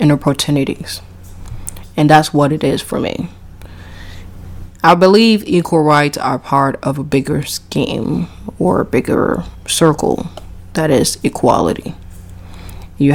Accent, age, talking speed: American, 20-39, 120 wpm